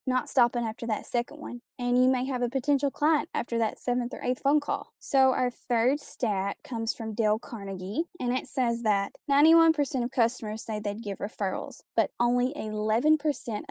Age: 10-29